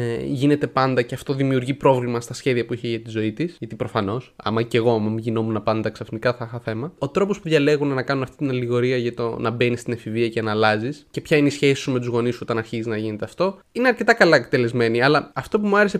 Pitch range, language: 120-165 Hz, Greek